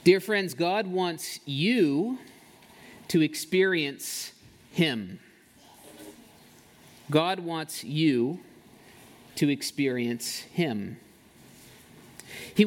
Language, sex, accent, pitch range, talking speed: English, male, American, 135-195 Hz, 70 wpm